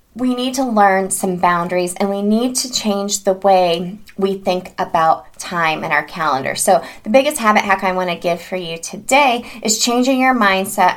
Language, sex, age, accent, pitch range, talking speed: English, female, 20-39, American, 180-225 Hz, 195 wpm